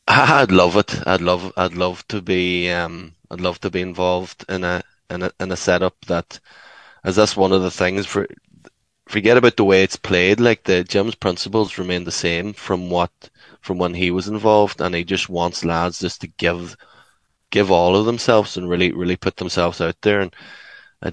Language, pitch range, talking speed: English, 90-105 Hz, 200 wpm